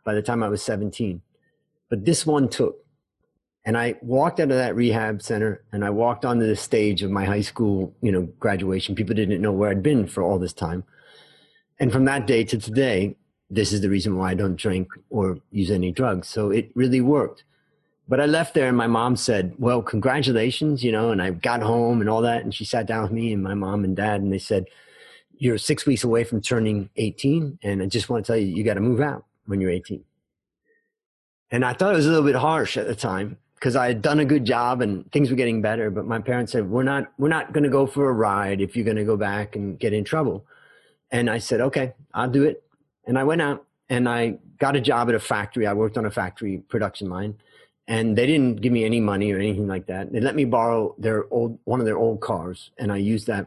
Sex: male